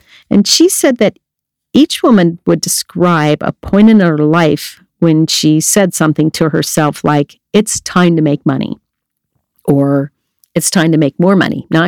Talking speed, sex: 165 wpm, female